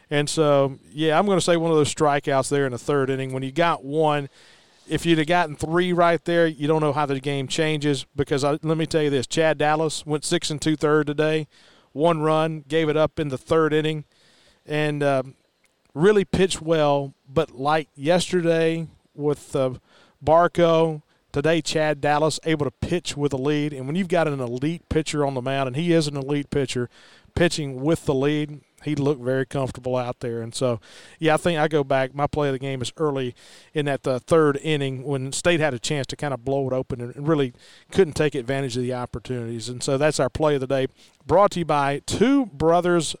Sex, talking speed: male, 215 wpm